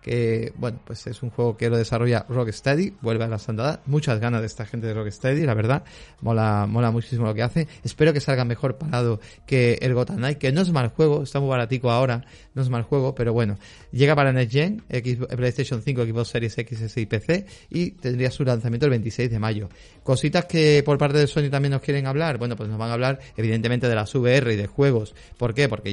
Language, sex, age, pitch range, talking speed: Spanish, male, 30-49, 115-145 Hz, 230 wpm